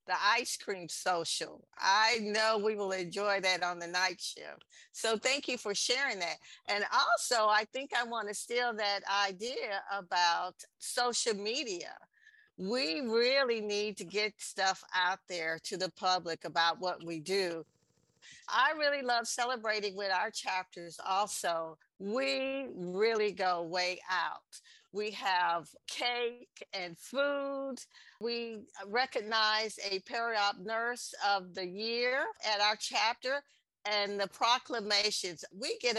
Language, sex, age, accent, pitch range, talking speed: English, female, 50-69, American, 190-245 Hz, 135 wpm